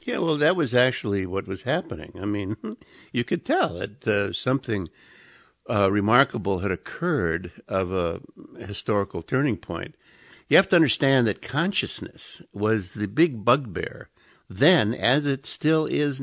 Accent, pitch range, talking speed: American, 95-125 Hz, 150 wpm